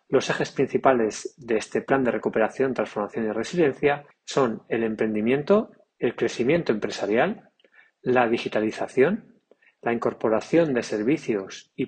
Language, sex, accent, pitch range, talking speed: Spanish, male, Spanish, 110-150 Hz, 120 wpm